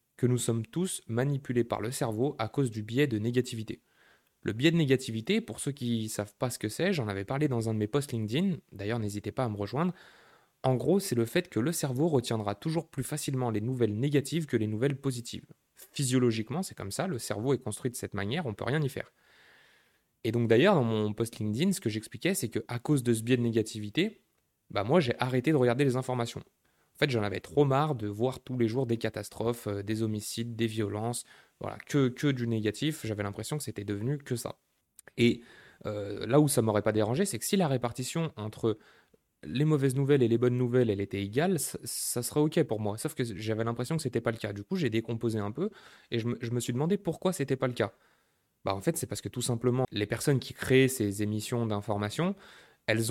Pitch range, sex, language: 110-140 Hz, male, French